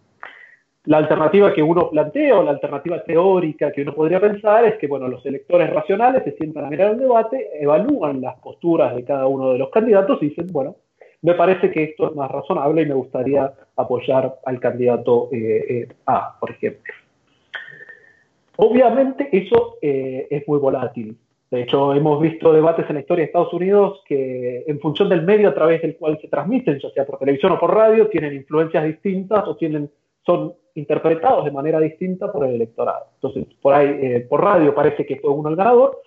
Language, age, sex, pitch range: Spanish, 30-49, male, 140-190 Hz